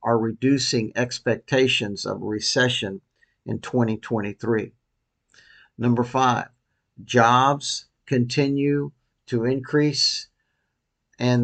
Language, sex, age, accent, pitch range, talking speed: English, male, 50-69, American, 115-130 Hz, 75 wpm